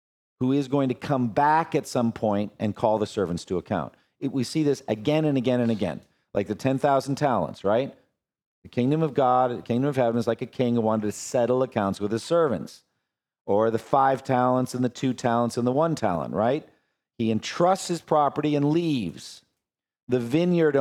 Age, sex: 50-69, male